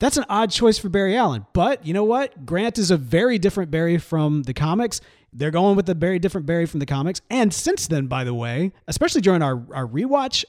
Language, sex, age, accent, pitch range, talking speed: English, male, 30-49, American, 145-225 Hz, 235 wpm